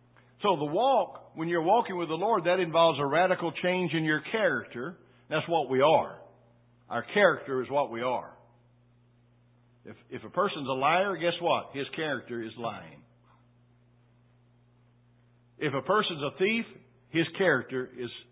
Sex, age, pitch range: male, 60-79, 120-145 Hz